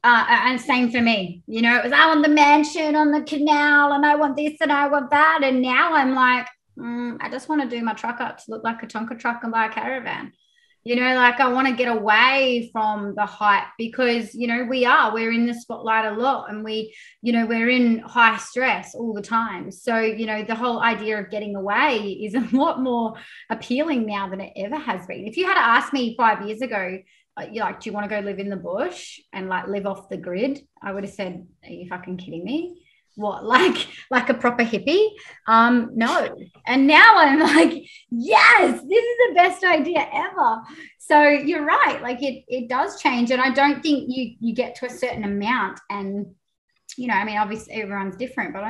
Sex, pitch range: female, 215-285 Hz